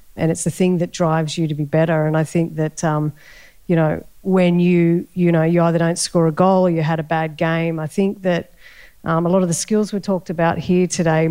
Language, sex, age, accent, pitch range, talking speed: English, female, 40-59, Australian, 160-180 Hz, 250 wpm